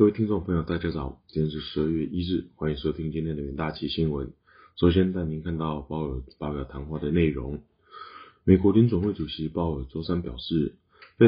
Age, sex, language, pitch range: 20-39, male, Chinese, 75-85 Hz